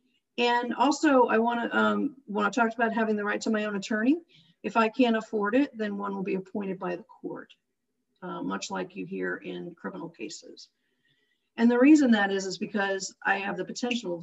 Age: 50-69